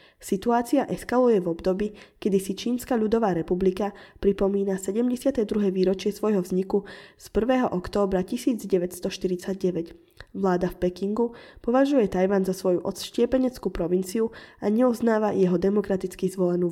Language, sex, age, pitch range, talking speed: Slovak, female, 20-39, 180-215 Hz, 115 wpm